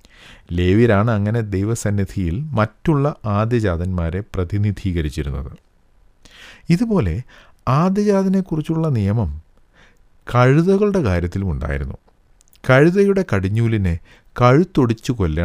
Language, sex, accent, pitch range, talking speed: English, male, Indian, 85-130 Hz, 80 wpm